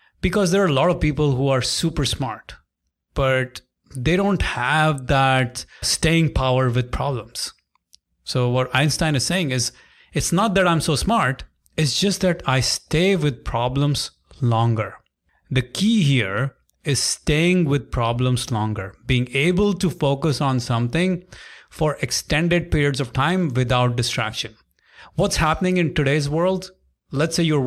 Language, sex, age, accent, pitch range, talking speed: English, male, 30-49, Indian, 125-165 Hz, 150 wpm